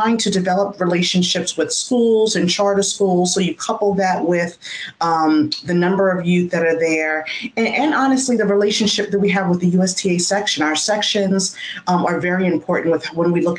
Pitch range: 155-190 Hz